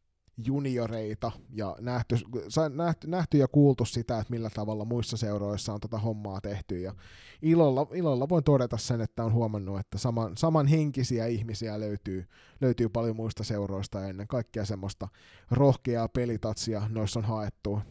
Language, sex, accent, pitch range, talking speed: Finnish, male, native, 110-130 Hz, 135 wpm